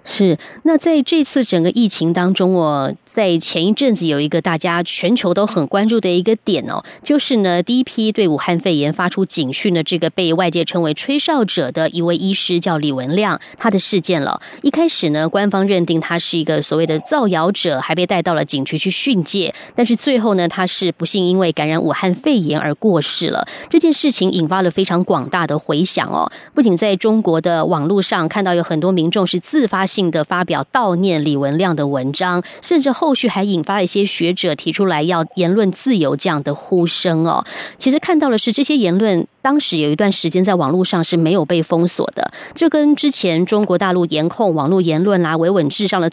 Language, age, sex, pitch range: Chinese, 30-49, female, 165-215 Hz